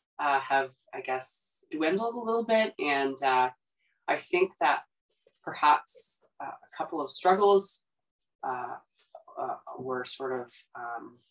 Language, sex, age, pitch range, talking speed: English, female, 20-39, 130-215 Hz, 125 wpm